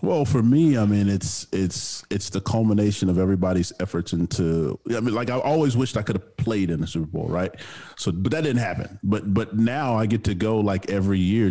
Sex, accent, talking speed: male, American, 230 wpm